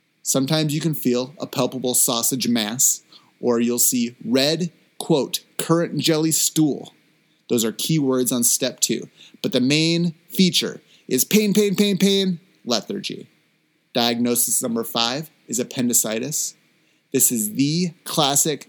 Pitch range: 120-155 Hz